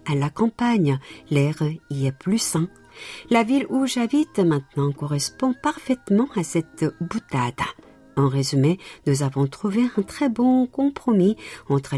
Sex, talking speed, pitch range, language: female, 140 wpm, 140-225 Hz, French